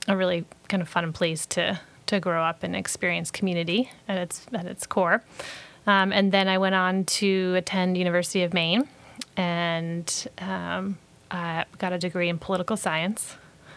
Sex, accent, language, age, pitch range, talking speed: female, American, English, 30-49, 175-205 Hz, 165 wpm